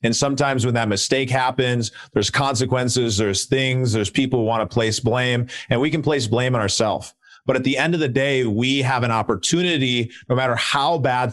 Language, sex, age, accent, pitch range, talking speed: English, male, 30-49, American, 115-135 Hz, 205 wpm